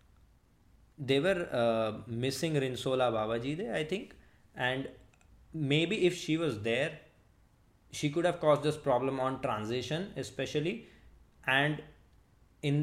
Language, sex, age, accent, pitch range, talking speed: English, male, 20-39, Indian, 115-145 Hz, 115 wpm